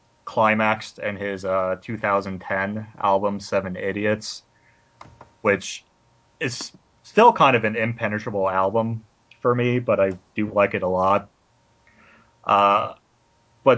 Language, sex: English, male